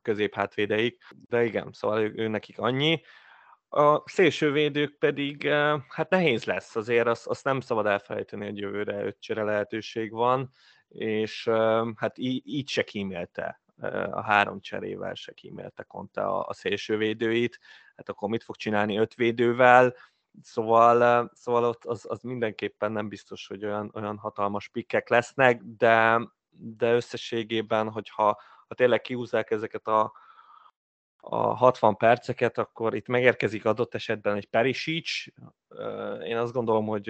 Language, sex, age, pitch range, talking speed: Hungarian, male, 20-39, 110-125 Hz, 135 wpm